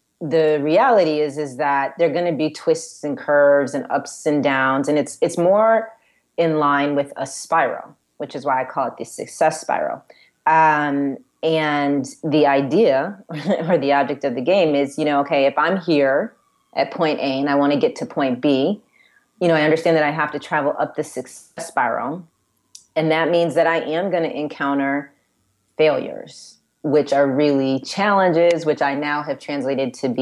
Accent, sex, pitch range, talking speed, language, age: American, female, 140-165 Hz, 190 wpm, English, 30-49